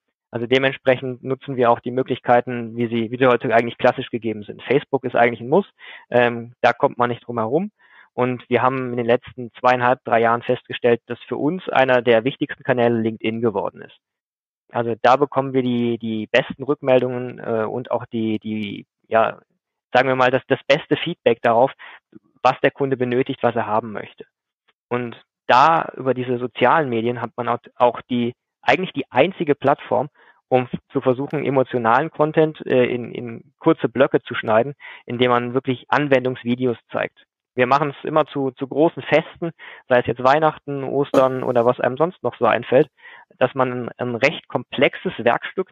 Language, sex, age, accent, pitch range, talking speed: German, male, 20-39, German, 120-135 Hz, 175 wpm